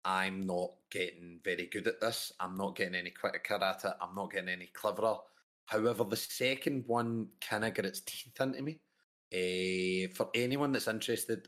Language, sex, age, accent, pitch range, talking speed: English, male, 30-49, British, 95-115 Hz, 185 wpm